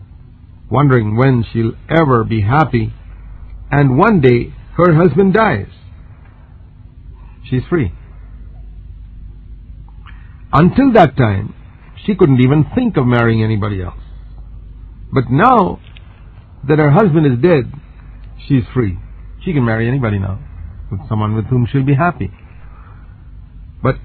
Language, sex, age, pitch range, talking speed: English, male, 50-69, 95-130 Hz, 115 wpm